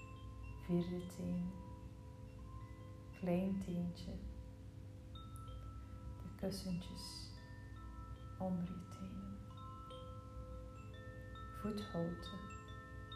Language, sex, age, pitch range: Dutch, female, 30-49, 100-105 Hz